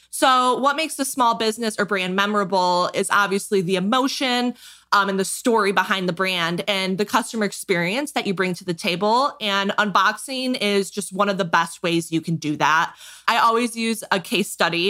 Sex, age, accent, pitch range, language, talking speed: female, 20-39, American, 180-220 Hz, English, 195 wpm